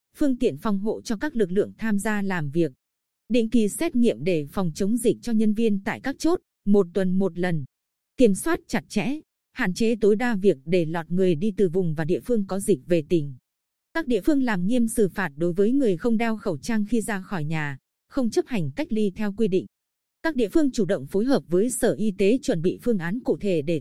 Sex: female